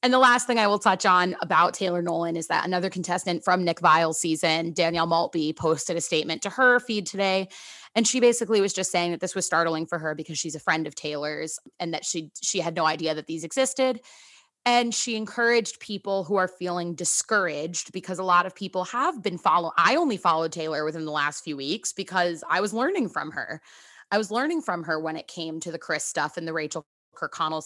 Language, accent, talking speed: English, American, 225 wpm